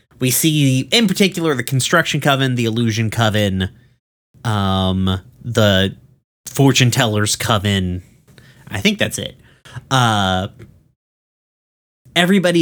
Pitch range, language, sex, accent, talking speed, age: 105-135 Hz, English, male, American, 100 wpm, 30-49